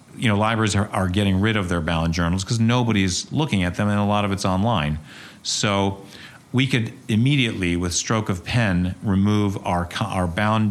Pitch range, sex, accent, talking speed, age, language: 90-115 Hz, male, American, 190 wpm, 40-59, English